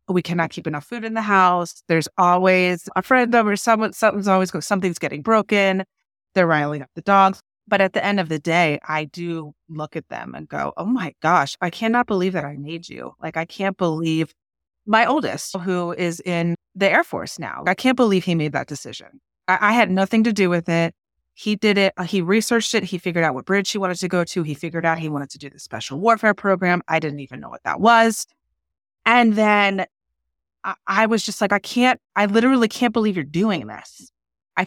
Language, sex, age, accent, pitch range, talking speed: English, female, 30-49, American, 160-200 Hz, 220 wpm